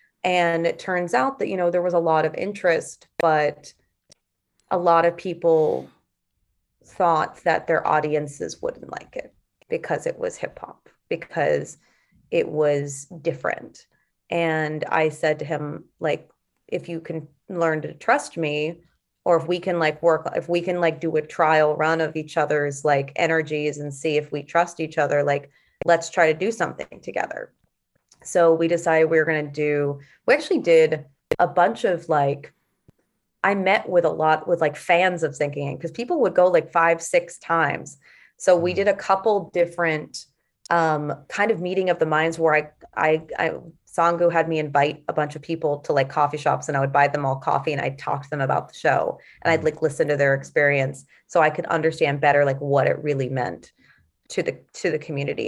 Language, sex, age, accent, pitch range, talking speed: English, female, 30-49, American, 150-170 Hz, 195 wpm